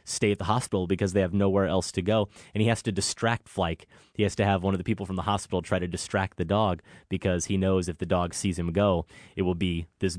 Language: English